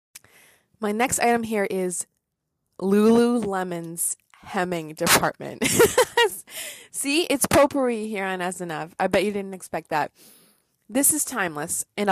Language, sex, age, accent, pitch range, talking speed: English, female, 20-39, American, 185-245 Hz, 120 wpm